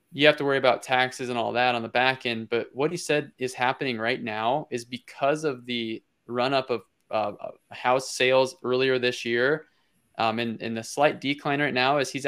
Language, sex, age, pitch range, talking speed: English, male, 20-39, 115-135 Hz, 210 wpm